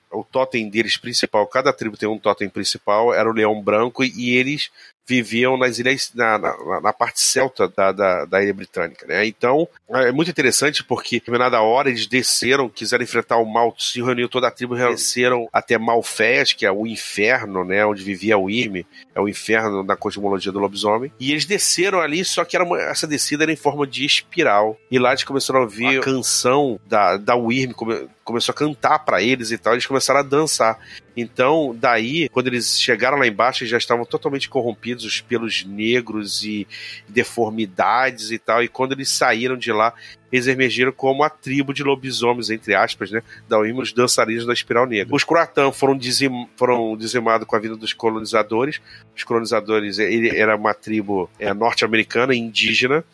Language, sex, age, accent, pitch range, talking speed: Portuguese, male, 40-59, Brazilian, 110-130 Hz, 185 wpm